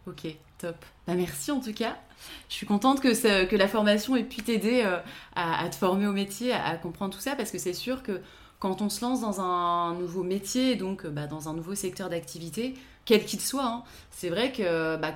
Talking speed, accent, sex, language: 230 wpm, French, female, French